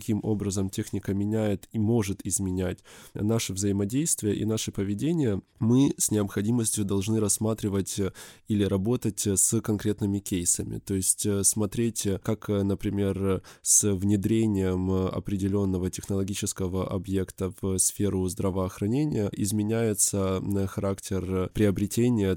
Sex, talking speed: male, 100 wpm